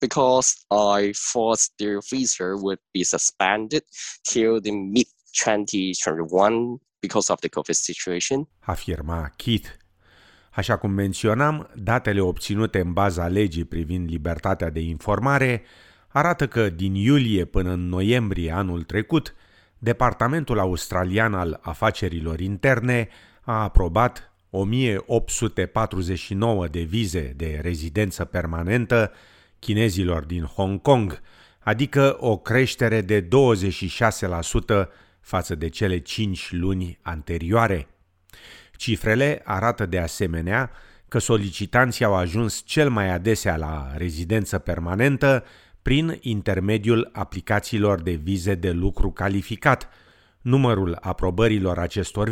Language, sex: Romanian, male